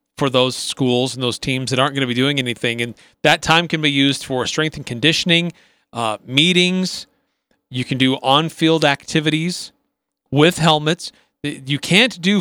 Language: English